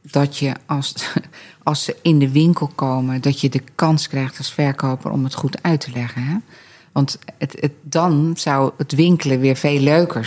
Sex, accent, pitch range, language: female, Dutch, 135-155 Hz, Dutch